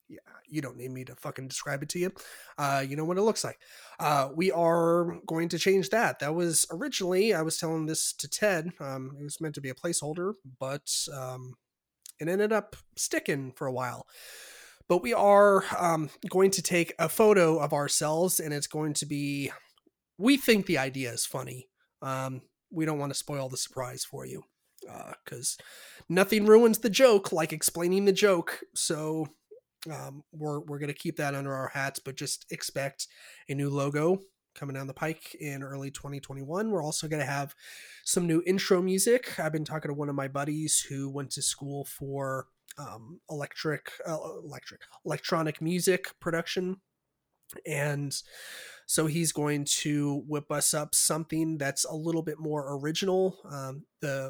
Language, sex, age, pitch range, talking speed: English, male, 30-49, 140-175 Hz, 180 wpm